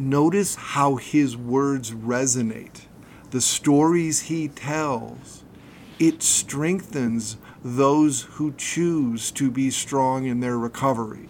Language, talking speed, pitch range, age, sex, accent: English, 105 wpm, 125-160 Hz, 50-69, male, American